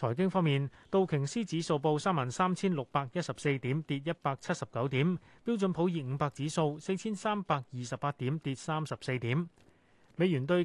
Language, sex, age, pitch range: Chinese, male, 30-49, 130-175 Hz